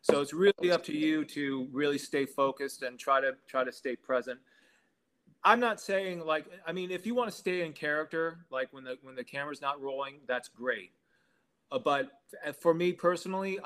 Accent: American